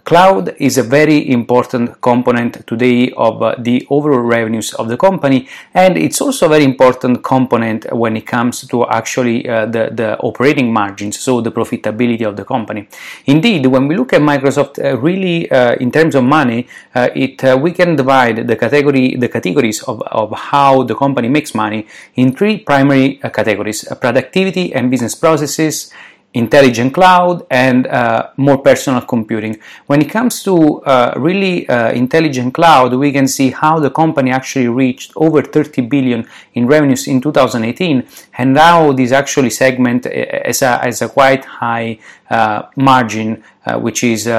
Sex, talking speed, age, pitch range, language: male, 165 wpm, 30-49, 120-145 Hz, English